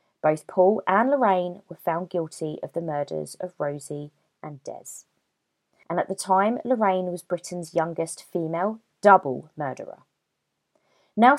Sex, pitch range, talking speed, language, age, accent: female, 155-205 Hz, 135 wpm, English, 20-39, British